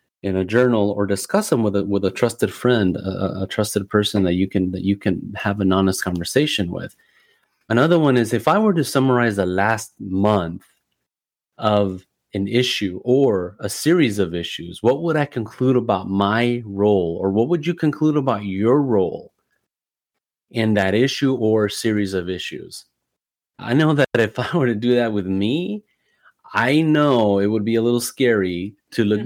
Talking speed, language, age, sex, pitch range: 185 wpm, English, 30-49, male, 100-120 Hz